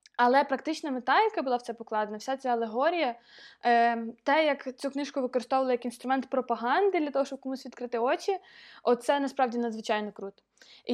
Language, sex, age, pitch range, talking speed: Ukrainian, female, 20-39, 250-315 Hz, 165 wpm